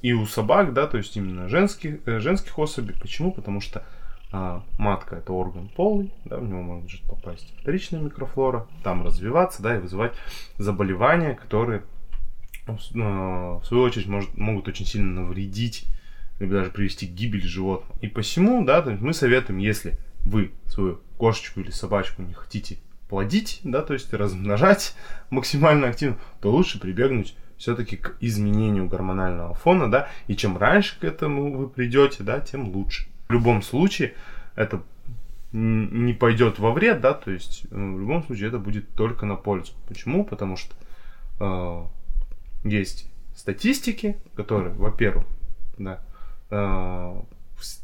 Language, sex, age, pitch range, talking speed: Russian, male, 20-39, 95-120 Hz, 145 wpm